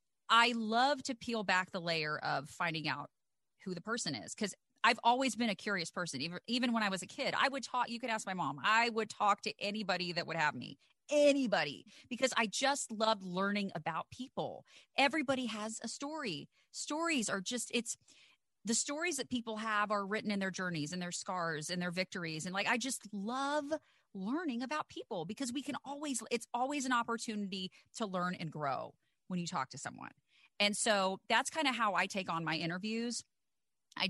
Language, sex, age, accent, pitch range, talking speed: English, female, 30-49, American, 185-255 Hz, 200 wpm